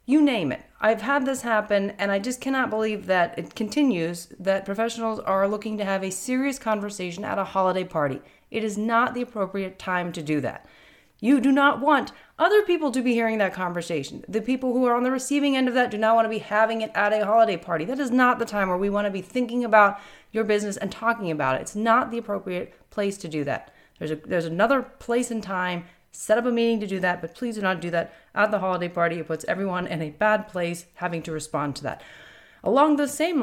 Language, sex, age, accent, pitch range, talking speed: English, female, 30-49, American, 180-235 Hz, 240 wpm